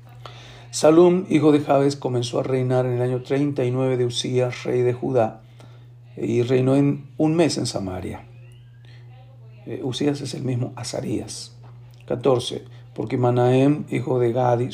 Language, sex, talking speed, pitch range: Spanish, male, 140 wpm, 120-140 Hz